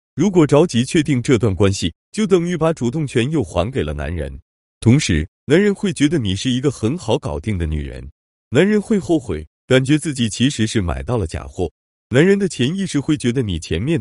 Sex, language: male, Chinese